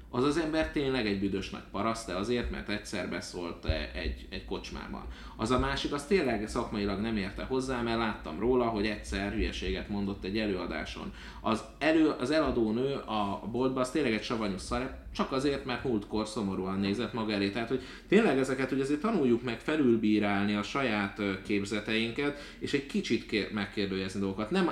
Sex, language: male, Hungarian